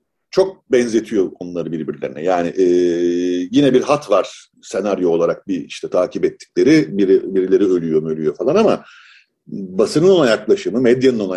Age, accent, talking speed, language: 40-59, native, 135 wpm, Turkish